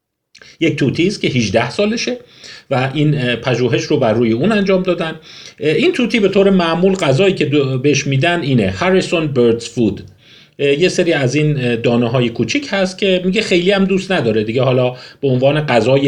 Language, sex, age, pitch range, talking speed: Persian, male, 40-59, 120-185 Hz, 175 wpm